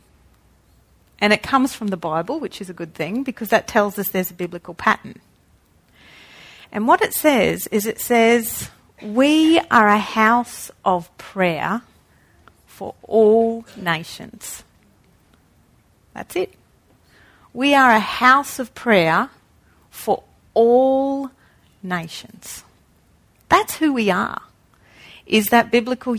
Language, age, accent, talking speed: English, 40-59, Australian, 120 wpm